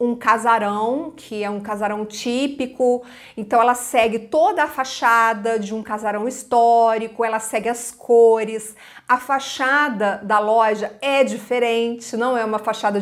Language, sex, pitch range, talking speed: Portuguese, female, 220-280 Hz, 145 wpm